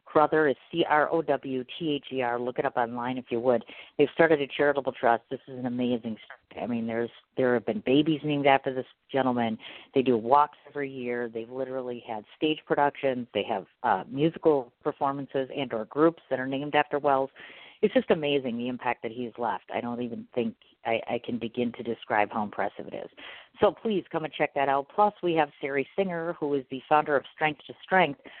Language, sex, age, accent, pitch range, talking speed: English, female, 50-69, American, 120-150 Hz, 205 wpm